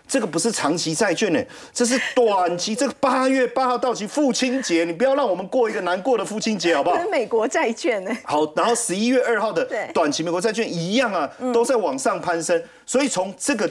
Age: 30-49